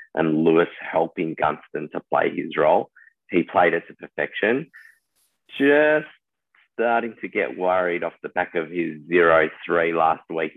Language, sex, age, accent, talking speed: English, male, 30-49, Australian, 150 wpm